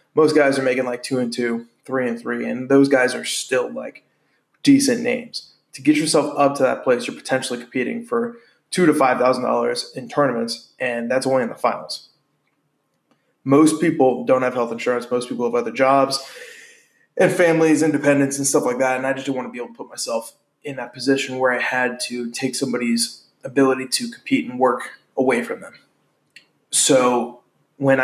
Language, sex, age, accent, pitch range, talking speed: English, male, 20-39, American, 125-160 Hz, 195 wpm